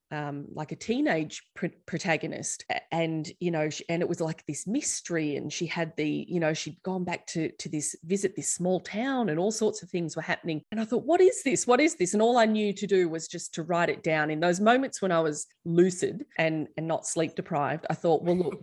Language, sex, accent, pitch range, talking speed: English, female, Australian, 155-195 Hz, 245 wpm